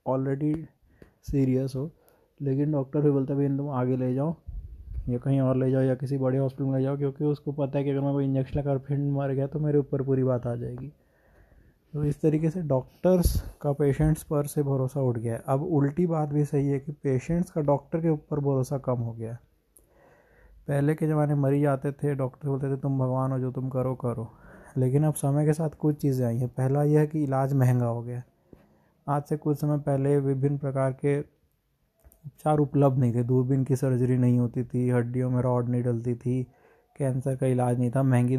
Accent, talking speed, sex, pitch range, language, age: native, 215 wpm, male, 130-145 Hz, Hindi, 20-39